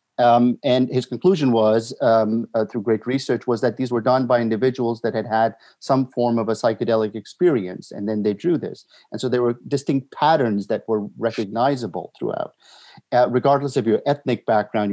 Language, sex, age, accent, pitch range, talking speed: English, male, 50-69, American, 110-130 Hz, 190 wpm